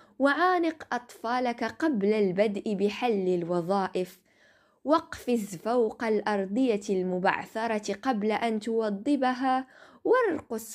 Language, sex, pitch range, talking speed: Arabic, female, 185-240 Hz, 80 wpm